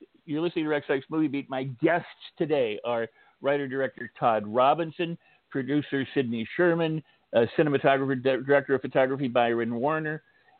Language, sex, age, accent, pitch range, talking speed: English, male, 50-69, American, 120-145 Hz, 140 wpm